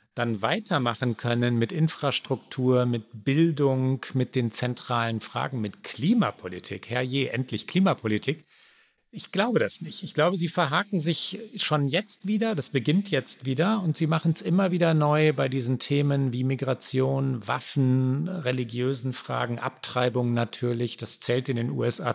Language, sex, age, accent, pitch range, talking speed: German, male, 40-59, German, 125-165 Hz, 145 wpm